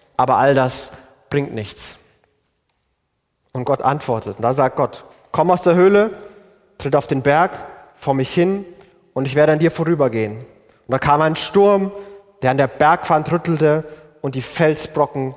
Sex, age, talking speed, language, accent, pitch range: male, 30-49, 165 wpm, German, German, 120-150 Hz